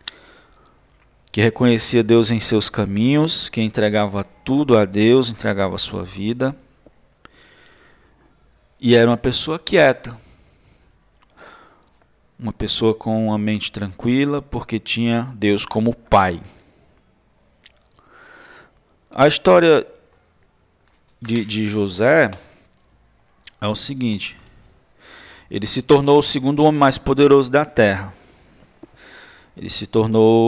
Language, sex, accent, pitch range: Portuguese, male, Brazilian, 105-130 Hz